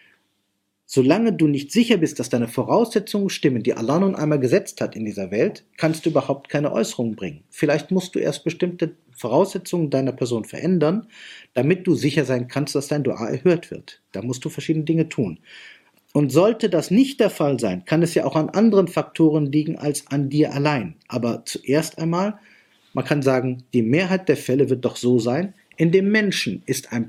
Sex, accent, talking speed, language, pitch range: male, German, 195 wpm, German, 130-175 Hz